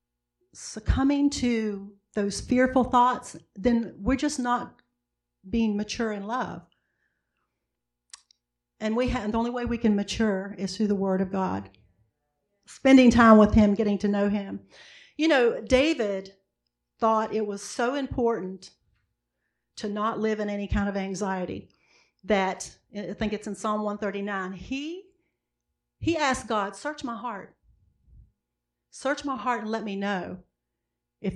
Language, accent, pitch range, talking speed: English, American, 190-240 Hz, 145 wpm